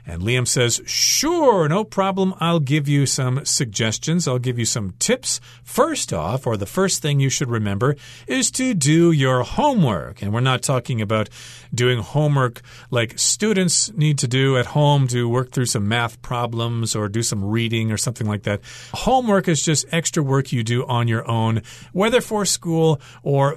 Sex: male